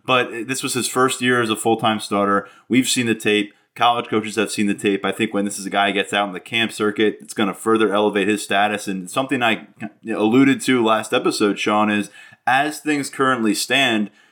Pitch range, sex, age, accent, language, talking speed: 100-130 Hz, male, 20-39, American, English, 225 wpm